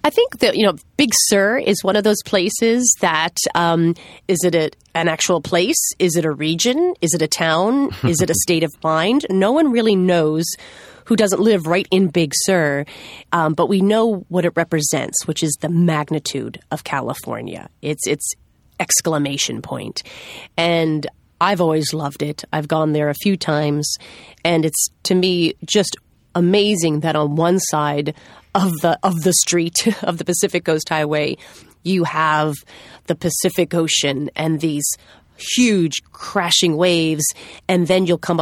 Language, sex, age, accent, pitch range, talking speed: English, female, 30-49, American, 155-185 Hz, 160 wpm